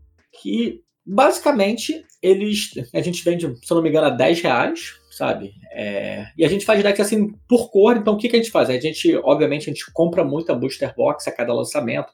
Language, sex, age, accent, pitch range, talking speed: Portuguese, male, 20-39, Brazilian, 150-230 Hz, 210 wpm